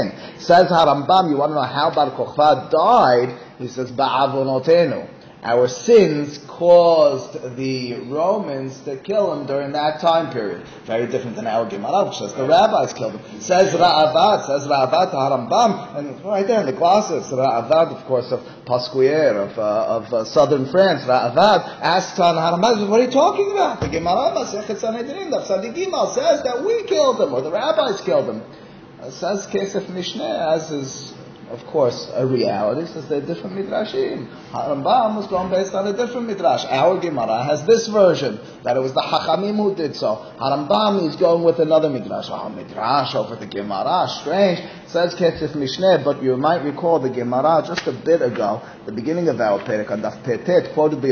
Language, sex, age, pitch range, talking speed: English, male, 30-49, 130-190 Hz, 165 wpm